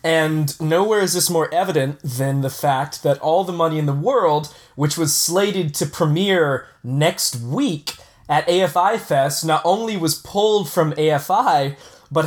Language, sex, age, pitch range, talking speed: English, male, 20-39, 145-180 Hz, 160 wpm